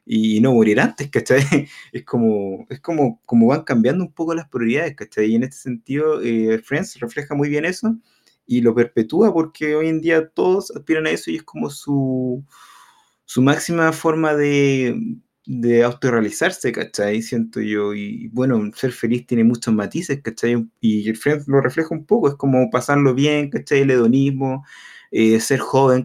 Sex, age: male, 20-39